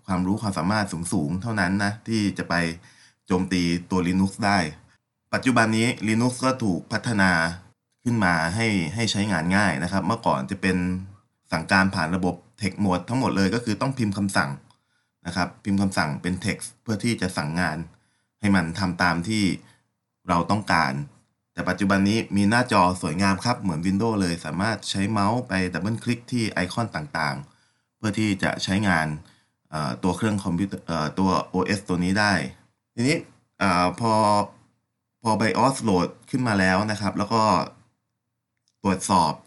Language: Thai